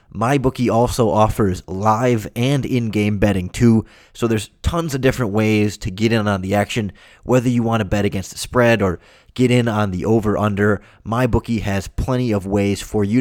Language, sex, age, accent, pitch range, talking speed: English, male, 20-39, American, 100-125 Hz, 185 wpm